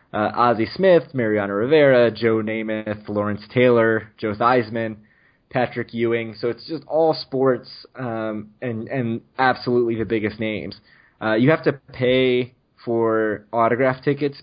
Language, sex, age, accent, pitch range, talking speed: English, male, 20-39, American, 105-120 Hz, 135 wpm